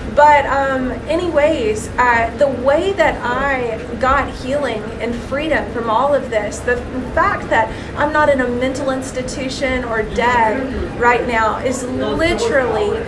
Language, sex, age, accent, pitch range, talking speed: English, female, 30-49, American, 240-290 Hz, 140 wpm